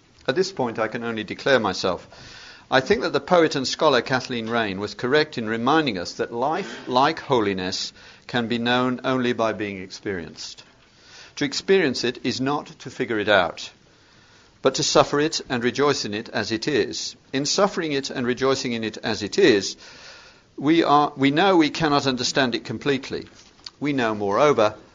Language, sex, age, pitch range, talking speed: English, male, 50-69, 110-140 Hz, 180 wpm